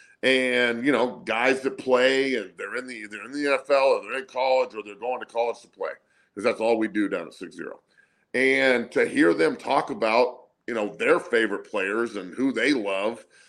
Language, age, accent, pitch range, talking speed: English, 40-59, American, 110-140 Hz, 215 wpm